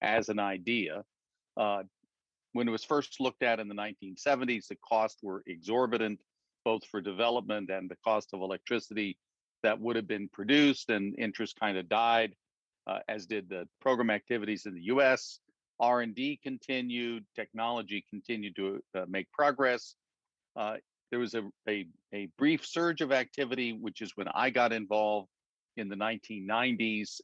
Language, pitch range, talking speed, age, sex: English, 105-125 Hz, 155 wpm, 50-69, male